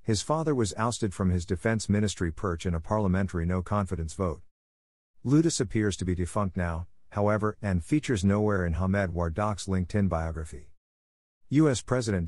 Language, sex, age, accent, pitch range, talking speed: English, male, 50-69, American, 90-110 Hz, 150 wpm